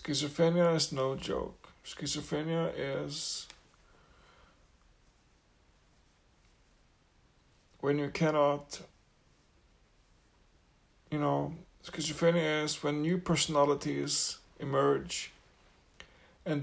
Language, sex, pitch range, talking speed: English, male, 130-155 Hz, 65 wpm